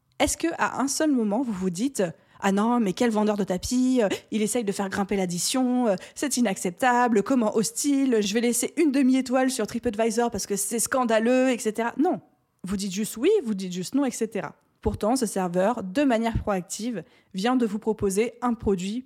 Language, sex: French, female